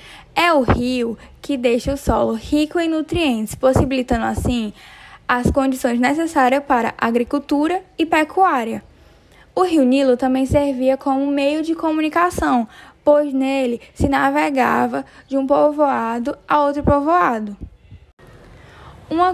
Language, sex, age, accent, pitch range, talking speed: Portuguese, female, 10-29, Brazilian, 245-300 Hz, 120 wpm